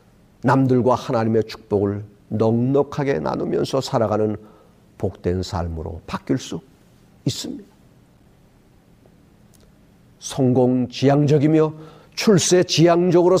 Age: 50-69